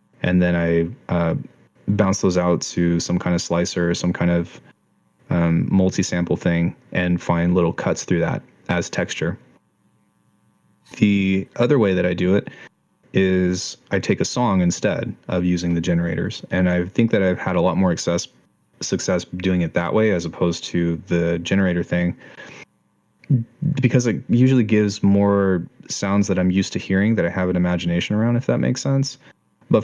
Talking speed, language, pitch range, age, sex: 175 wpm, English, 85-100 Hz, 20-39, male